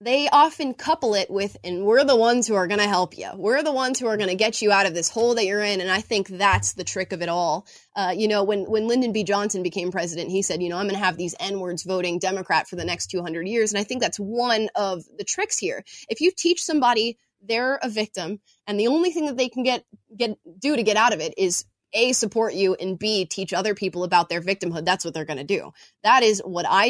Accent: American